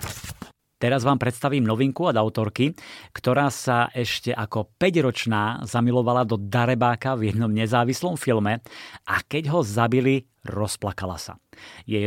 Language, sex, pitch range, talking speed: Slovak, male, 110-130 Hz, 125 wpm